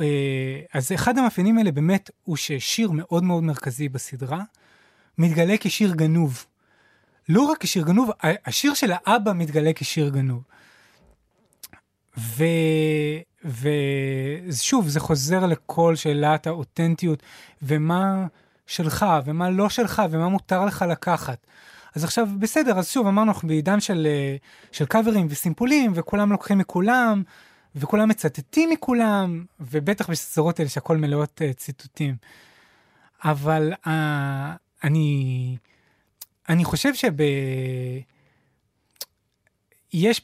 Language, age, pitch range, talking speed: English, 20-39, 145-195 Hz, 110 wpm